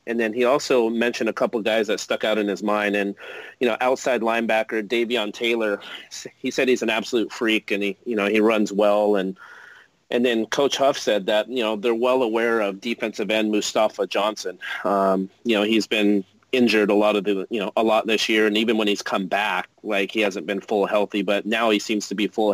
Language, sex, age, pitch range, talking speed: English, male, 30-49, 100-115 Hz, 230 wpm